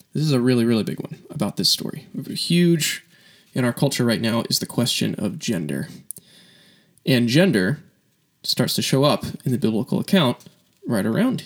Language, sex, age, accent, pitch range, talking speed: English, male, 20-39, American, 125-185 Hz, 175 wpm